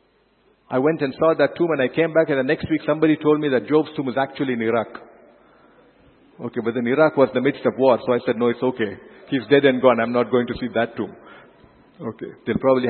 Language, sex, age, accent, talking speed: English, male, 50-69, Indian, 250 wpm